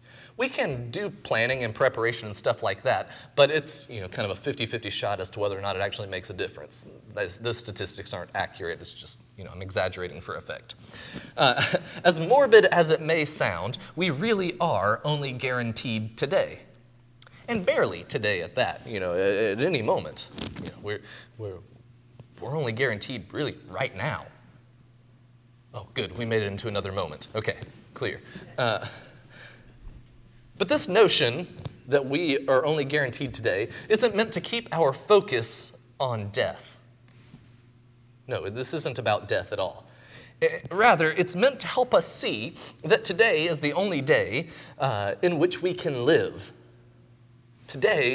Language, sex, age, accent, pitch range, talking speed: English, male, 30-49, American, 115-165 Hz, 165 wpm